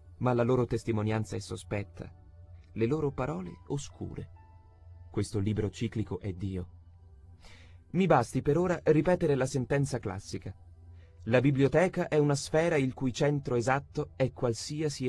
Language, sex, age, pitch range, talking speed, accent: Italian, male, 30-49, 95-145 Hz, 135 wpm, native